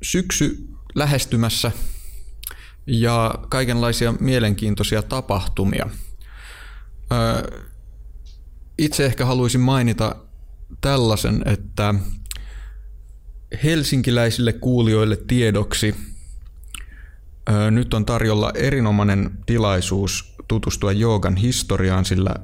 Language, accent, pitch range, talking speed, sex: Finnish, native, 95-115 Hz, 65 wpm, male